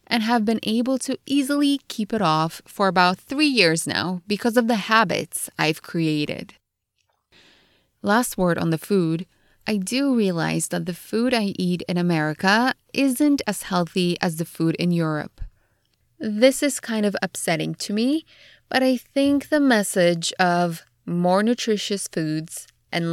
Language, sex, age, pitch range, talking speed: English, female, 20-39, 170-230 Hz, 155 wpm